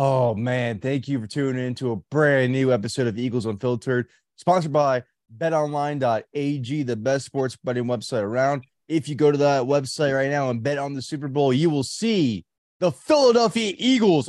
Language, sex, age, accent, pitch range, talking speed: English, male, 20-39, American, 115-150 Hz, 180 wpm